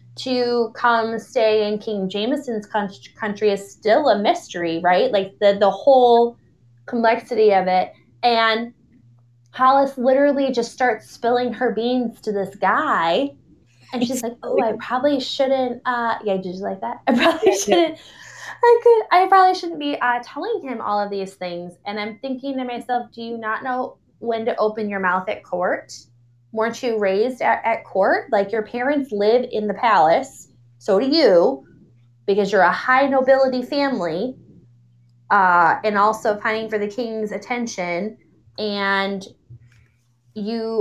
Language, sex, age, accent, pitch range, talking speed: English, female, 20-39, American, 195-245 Hz, 155 wpm